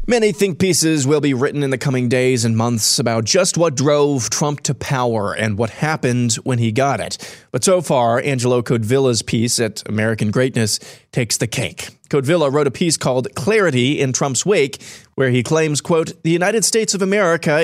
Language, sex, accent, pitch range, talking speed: English, male, American, 130-160 Hz, 190 wpm